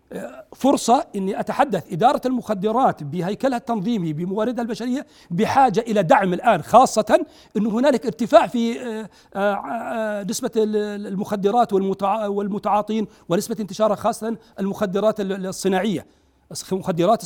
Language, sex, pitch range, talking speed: Arabic, male, 205-255 Hz, 95 wpm